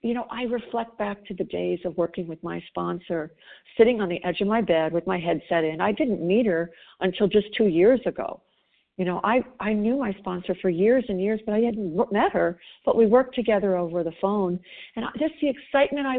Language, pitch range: English, 185-245 Hz